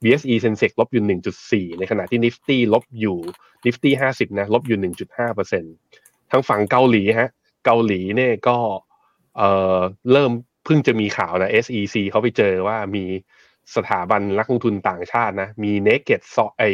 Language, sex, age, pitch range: Thai, male, 20-39, 100-125 Hz